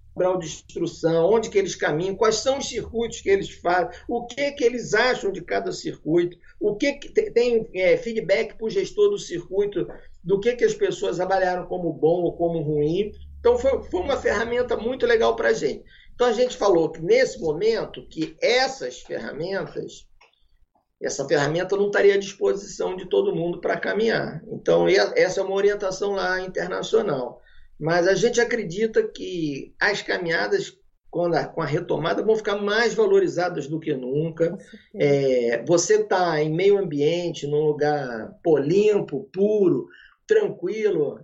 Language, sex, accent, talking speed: Portuguese, male, Brazilian, 160 wpm